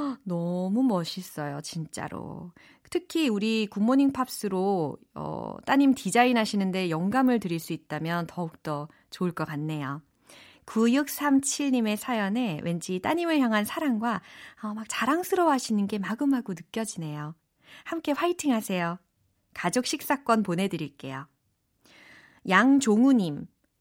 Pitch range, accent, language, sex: 190-275 Hz, native, Korean, female